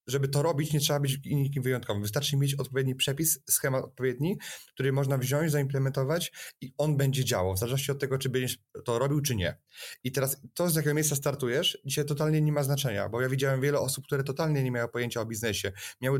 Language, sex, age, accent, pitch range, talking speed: Polish, male, 20-39, native, 130-150 Hz, 210 wpm